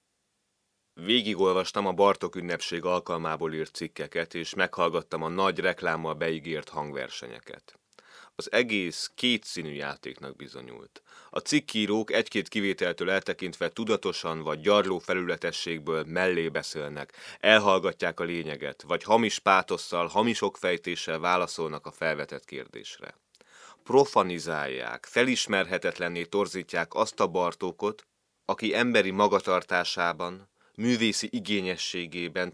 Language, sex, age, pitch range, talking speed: Hungarian, male, 30-49, 85-100 Hz, 100 wpm